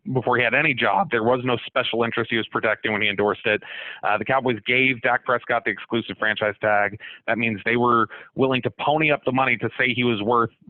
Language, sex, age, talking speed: English, male, 30-49, 235 wpm